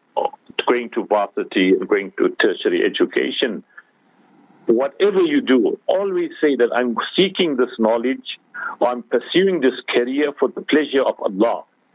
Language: English